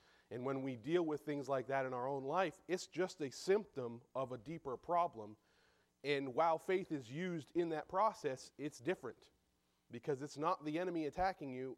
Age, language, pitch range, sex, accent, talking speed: 30-49, English, 135-185 Hz, male, American, 190 wpm